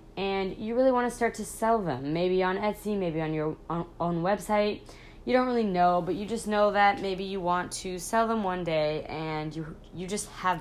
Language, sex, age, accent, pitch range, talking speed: English, female, 20-39, American, 160-205 Hz, 220 wpm